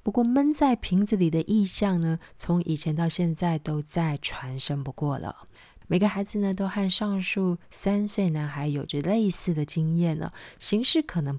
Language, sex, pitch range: Chinese, female, 155-195 Hz